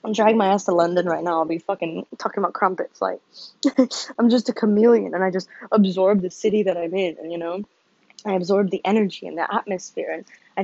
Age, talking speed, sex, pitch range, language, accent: 20-39, 220 wpm, female, 180-230 Hz, English, American